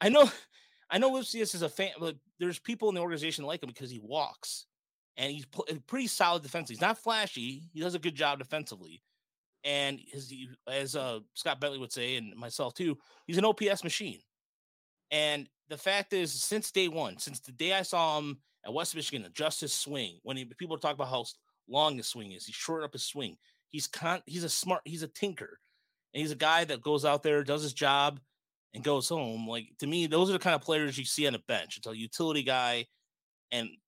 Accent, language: American, English